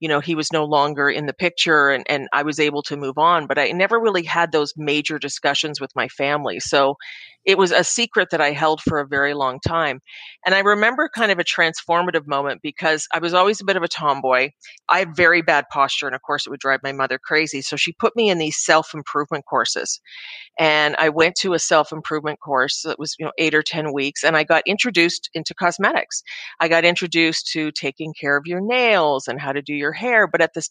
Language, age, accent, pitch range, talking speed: English, 40-59, American, 145-175 Hz, 235 wpm